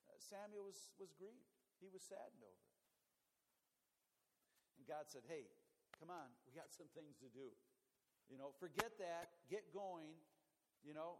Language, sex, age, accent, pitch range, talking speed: English, male, 50-69, American, 185-250 Hz, 155 wpm